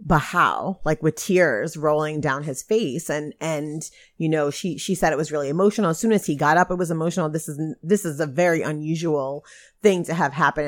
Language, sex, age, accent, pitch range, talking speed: English, female, 30-49, American, 150-185 Hz, 220 wpm